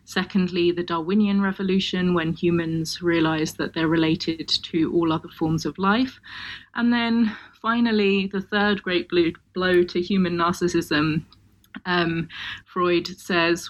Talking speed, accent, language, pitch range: 130 wpm, British, English, 165-190 Hz